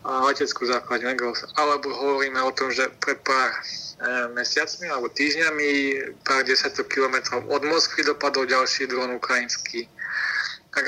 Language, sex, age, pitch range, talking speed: Slovak, male, 20-39, 125-145 Hz, 125 wpm